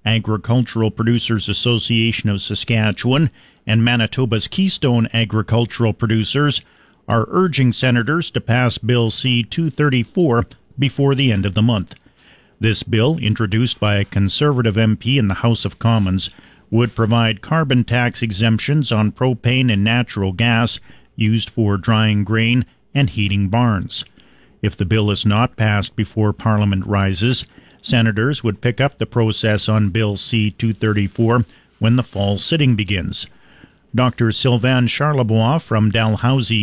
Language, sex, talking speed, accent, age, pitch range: English, male, 130 wpm, American, 40-59, 105-125 Hz